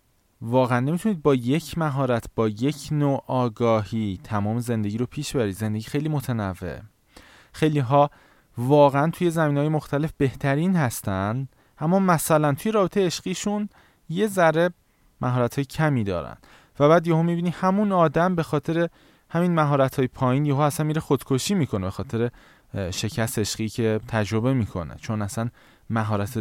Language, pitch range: Persian, 115-155 Hz